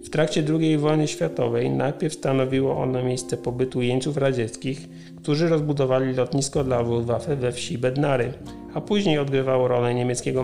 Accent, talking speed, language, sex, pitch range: native, 145 wpm, Polish, male, 125-150 Hz